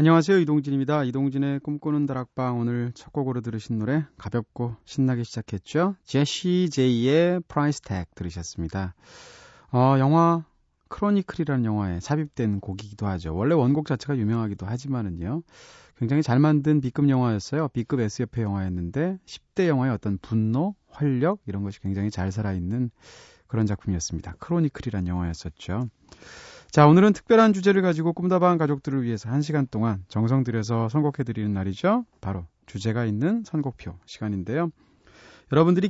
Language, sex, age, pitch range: Korean, male, 30-49, 110-155 Hz